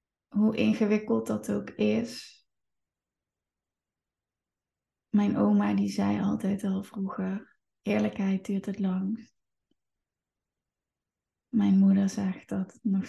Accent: Dutch